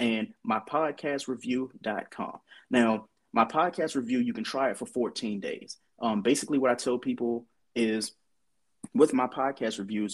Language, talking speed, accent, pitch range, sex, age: English, 140 wpm, American, 120-170 Hz, male, 30-49